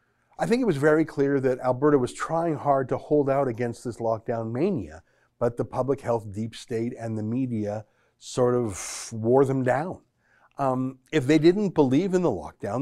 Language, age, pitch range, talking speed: English, 50-69, 110-140 Hz, 185 wpm